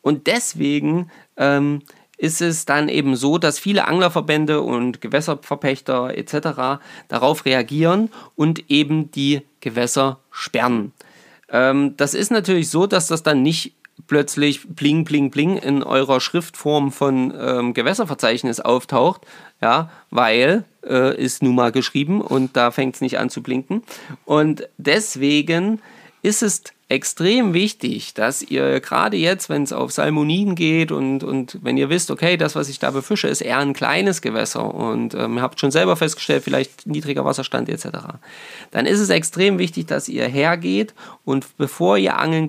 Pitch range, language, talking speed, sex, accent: 135-165 Hz, German, 155 wpm, male, German